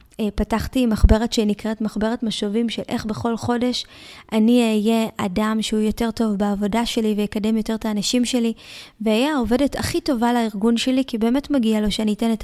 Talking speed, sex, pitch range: 170 wpm, female, 215-235 Hz